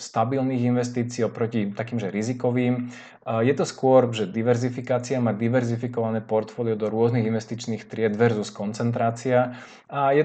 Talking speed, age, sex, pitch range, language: 130 wpm, 20-39, male, 115-130 Hz, Slovak